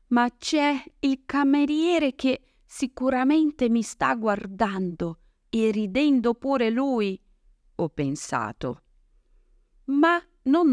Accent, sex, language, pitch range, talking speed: native, female, Italian, 155-255 Hz, 95 wpm